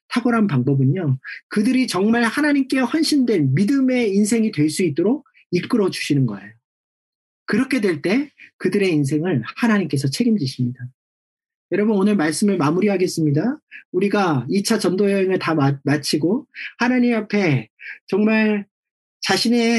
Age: 40-59